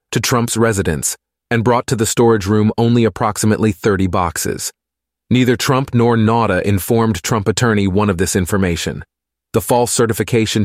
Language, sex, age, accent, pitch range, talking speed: English, male, 30-49, American, 95-115 Hz, 150 wpm